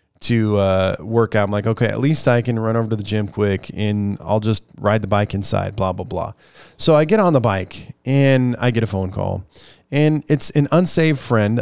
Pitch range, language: 105-135 Hz, English